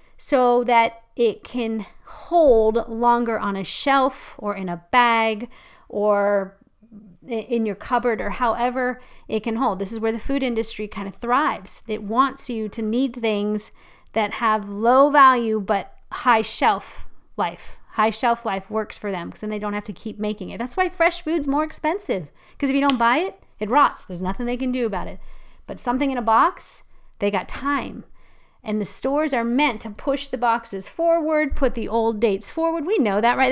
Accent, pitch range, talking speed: American, 210-270 Hz, 195 wpm